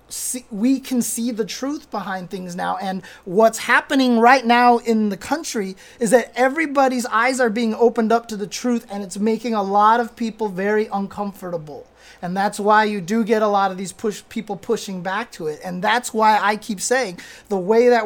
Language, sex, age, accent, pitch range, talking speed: English, male, 30-49, American, 200-235 Hz, 205 wpm